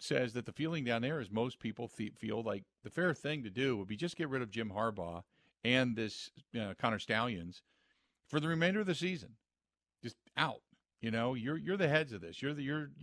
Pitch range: 115-165 Hz